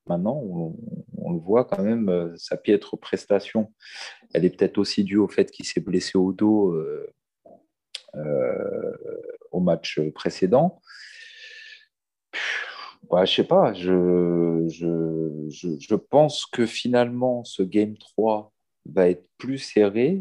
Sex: male